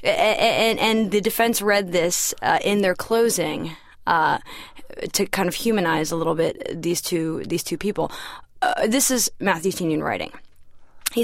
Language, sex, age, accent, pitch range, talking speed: English, female, 20-39, American, 180-230 Hz, 165 wpm